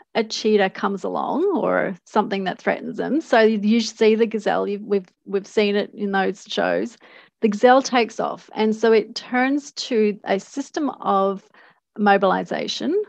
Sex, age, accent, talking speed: female, 30-49, Australian, 160 wpm